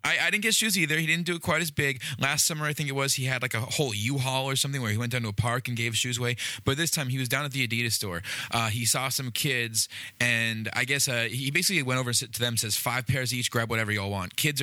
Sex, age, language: male, 20-39, English